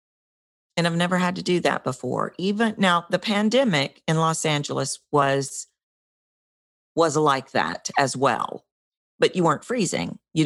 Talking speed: 150 wpm